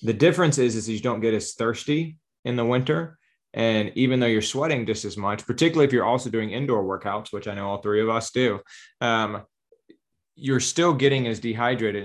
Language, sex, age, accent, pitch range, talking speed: English, male, 20-39, American, 105-140 Hz, 205 wpm